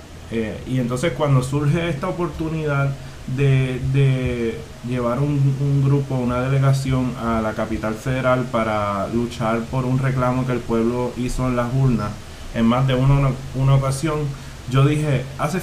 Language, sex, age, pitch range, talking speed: Spanish, male, 20-39, 115-150 Hz, 155 wpm